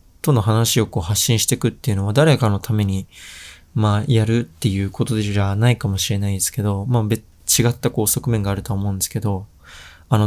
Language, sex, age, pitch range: Japanese, male, 20-39, 95-120 Hz